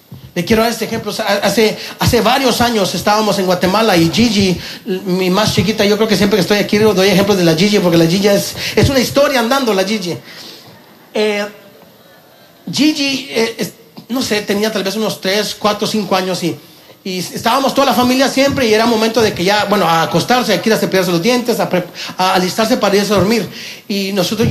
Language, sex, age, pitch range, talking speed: Spanish, male, 40-59, 195-250 Hz, 205 wpm